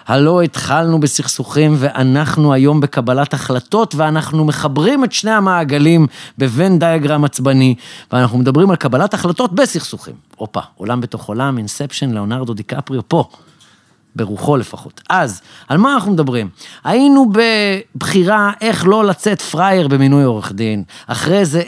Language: Hebrew